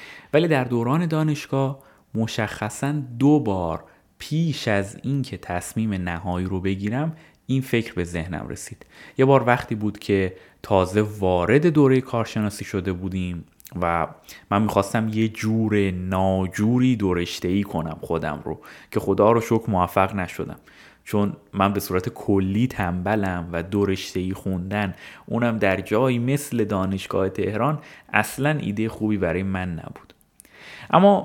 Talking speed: 135 wpm